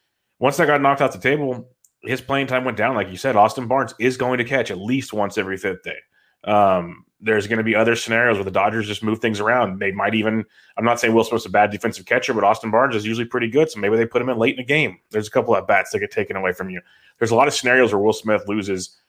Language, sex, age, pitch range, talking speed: English, male, 30-49, 105-125 Hz, 285 wpm